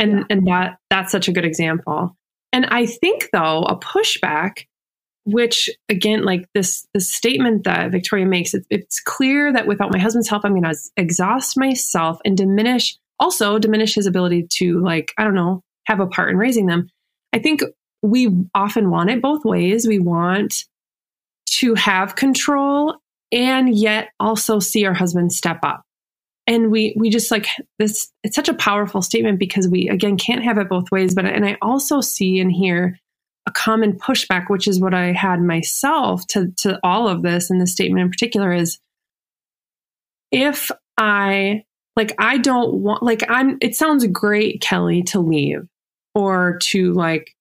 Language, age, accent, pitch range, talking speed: English, 20-39, American, 180-230 Hz, 175 wpm